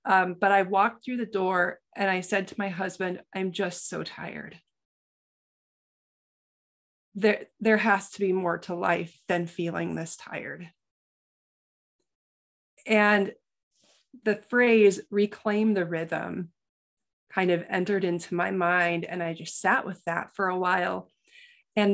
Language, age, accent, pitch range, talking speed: English, 30-49, American, 180-210 Hz, 140 wpm